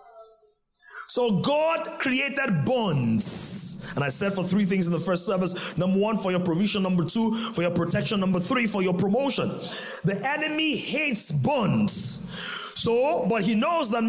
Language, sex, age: English, male, 30-49